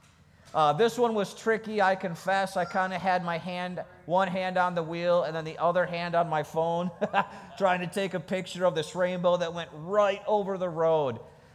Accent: American